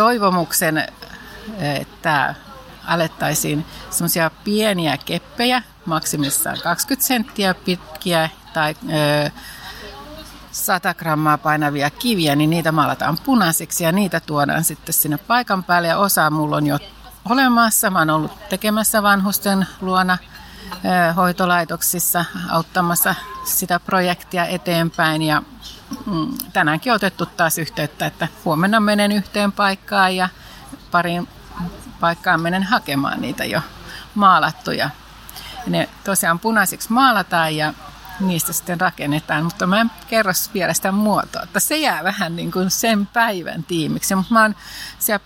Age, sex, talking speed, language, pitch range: 50-69, female, 115 wpm, Finnish, 165-205 Hz